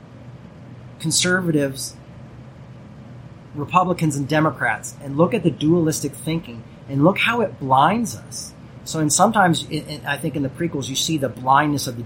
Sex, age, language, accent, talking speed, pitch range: male, 40-59, English, American, 160 wpm, 125-155 Hz